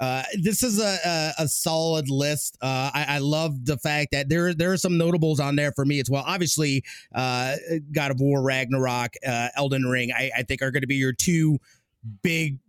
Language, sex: English, male